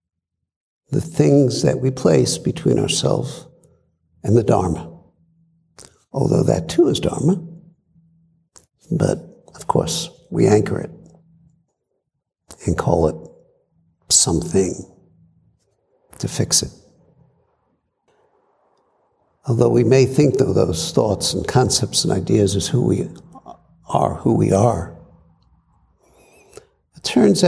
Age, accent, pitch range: 60-79, American, 120-165 Hz